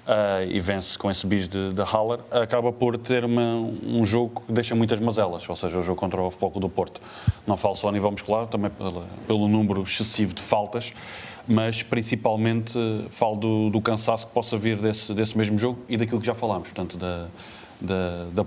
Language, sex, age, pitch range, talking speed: Portuguese, male, 20-39, 100-115 Hz, 200 wpm